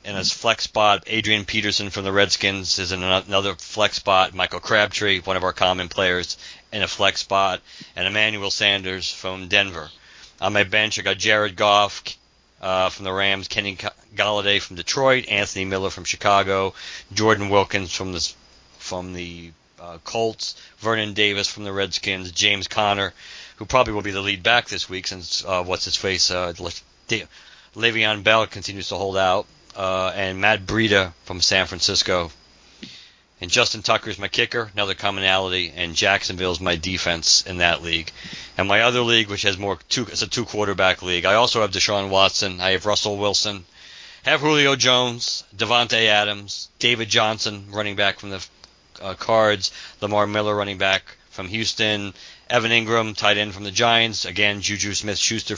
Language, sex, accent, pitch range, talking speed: English, male, American, 95-105 Hz, 175 wpm